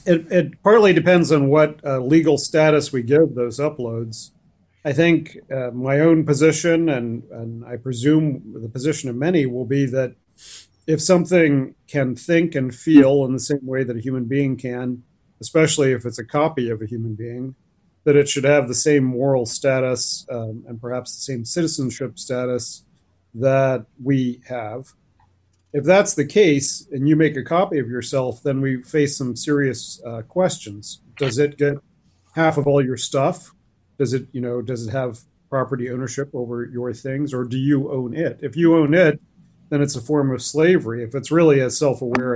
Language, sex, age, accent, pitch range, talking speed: English, male, 40-59, American, 125-155 Hz, 185 wpm